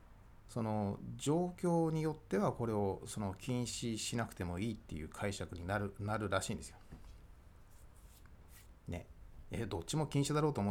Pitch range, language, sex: 95-125 Hz, Japanese, male